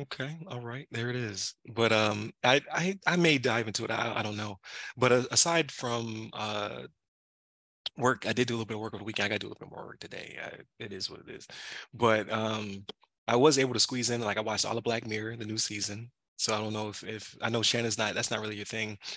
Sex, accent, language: male, American, English